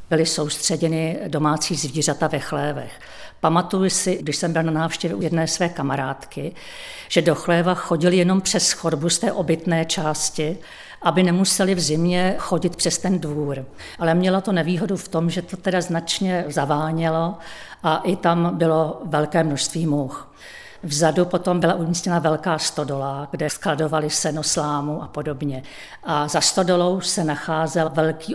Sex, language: female, Czech